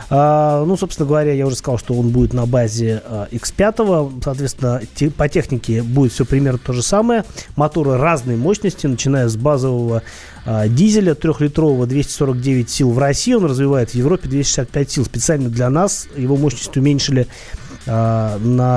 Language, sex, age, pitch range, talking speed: Russian, male, 30-49, 120-150 Hz, 160 wpm